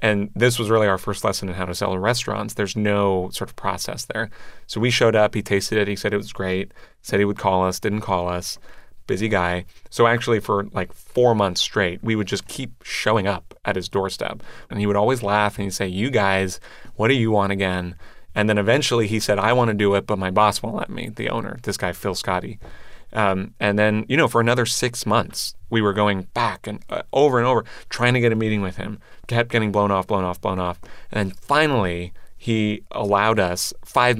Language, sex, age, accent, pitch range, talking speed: English, male, 30-49, American, 95-115 Hz, 235 wpm